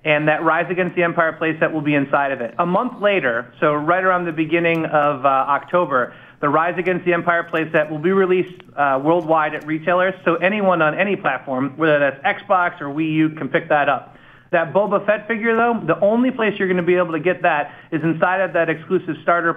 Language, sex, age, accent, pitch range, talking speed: English, male, 30-49, American, 155-185 Hz, 225 wpm